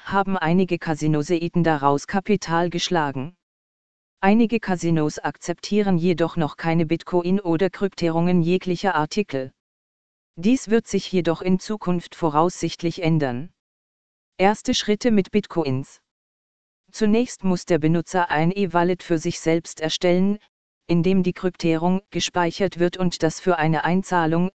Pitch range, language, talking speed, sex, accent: 160-190 Hz, German, 120 wpm, female, German